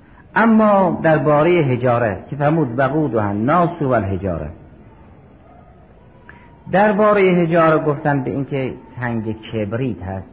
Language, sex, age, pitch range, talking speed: Persian, male, 50-69, 115-150 Hz, 130 wpm